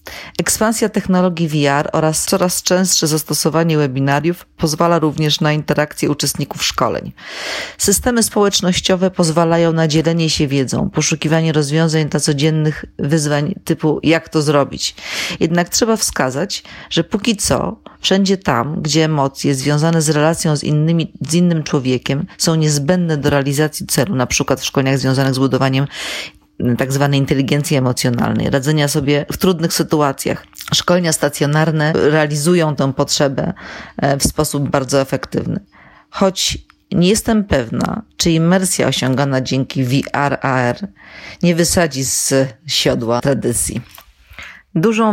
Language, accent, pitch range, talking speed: Polish, native, 140-175 Hz, 125 wpm